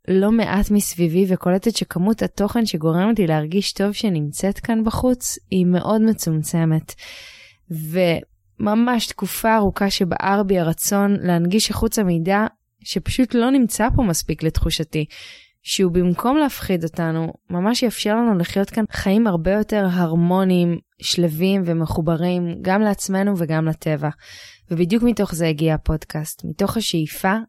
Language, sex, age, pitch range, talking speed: Hebrew, female, 20-39, 170-205 Hz, 125 wpm